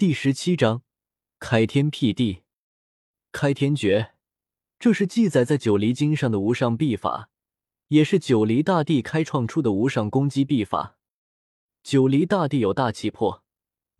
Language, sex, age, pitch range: Chinese, male, 20-39, 115-160 Hz